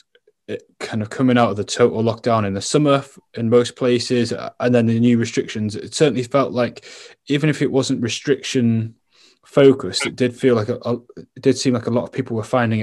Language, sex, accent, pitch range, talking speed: English, male, British, 105-125 Hz, 215 wpm